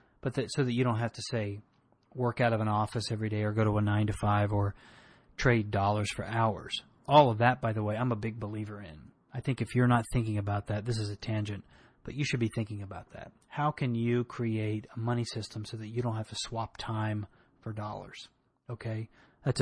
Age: 30-49